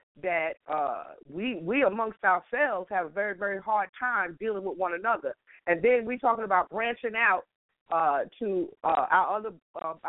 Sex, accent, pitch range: female, American, 195-245 Hz